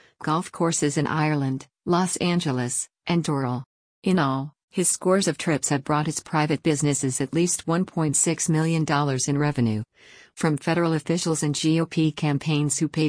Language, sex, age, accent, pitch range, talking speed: English, female, 50-69, American, 145-170 Hz, 150 wpm